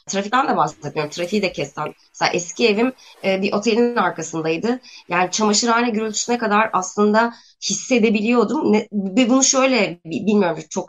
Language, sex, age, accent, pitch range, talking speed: Turkish, female, 20-39, native, 175-220 Hz, 125 wpm